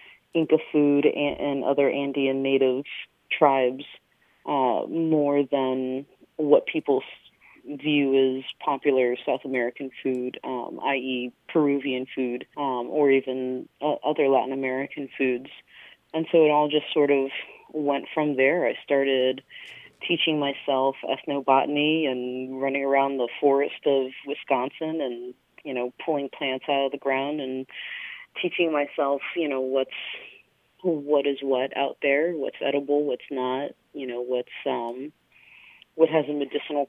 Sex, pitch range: female, 130-145 Hz